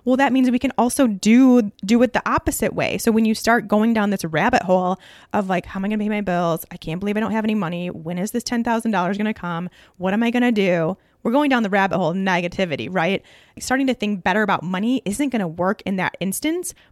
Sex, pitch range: female, 195-245 Hz